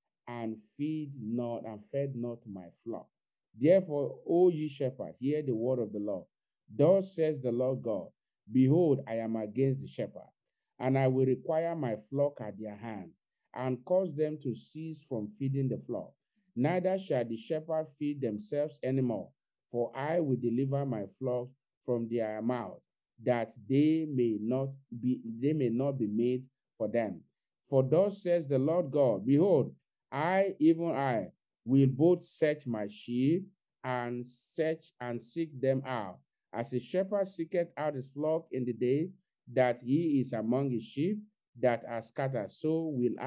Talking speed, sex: 165 wpm, male